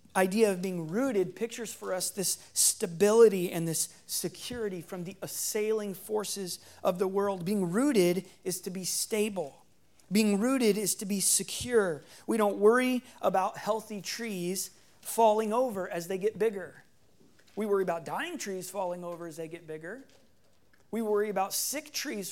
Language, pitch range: English, 180-220 Hz